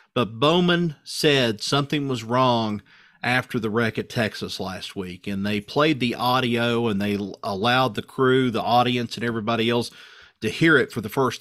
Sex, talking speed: male, 180 wpm